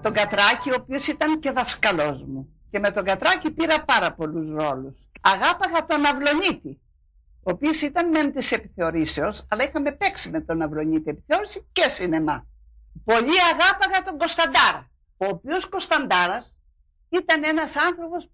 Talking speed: 145 wpm